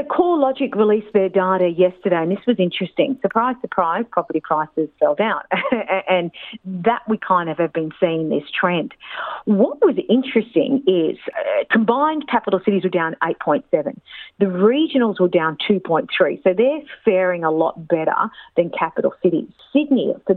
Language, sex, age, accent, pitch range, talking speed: Greek, female, 50-69, Australian, 170-225 Hz, 155 wpm